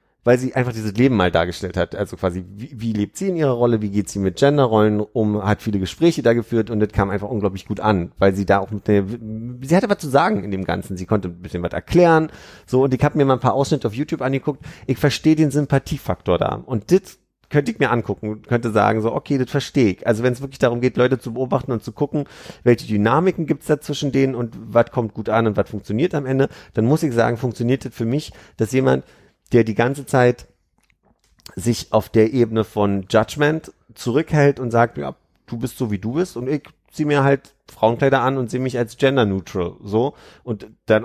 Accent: German